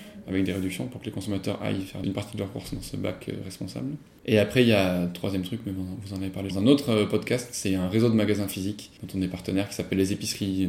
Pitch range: 95-110 Hz